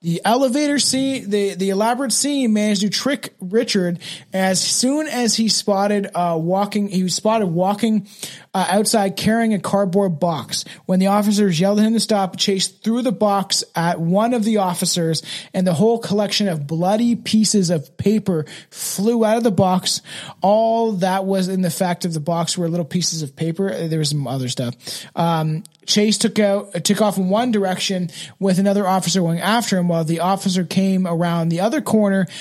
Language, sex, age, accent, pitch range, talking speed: English, male, 20-39, American, 175-210 Hz, 185 wpm